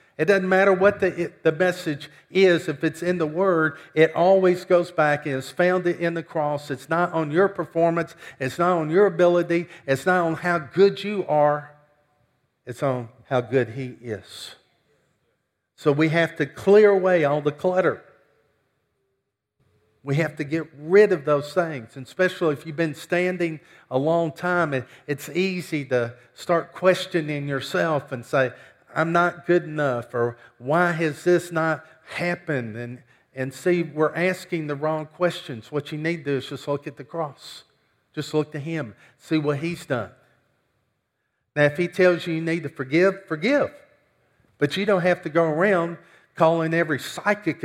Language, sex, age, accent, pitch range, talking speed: English, male, 50-69, American, 145-180 Hz, 175 wpm